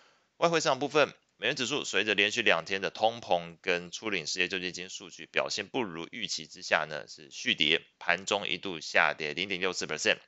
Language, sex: Chinese, male